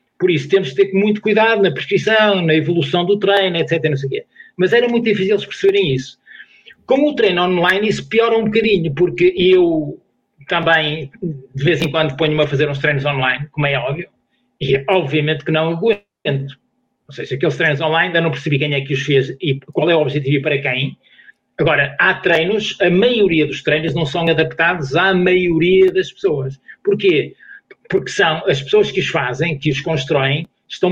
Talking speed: 195 wpm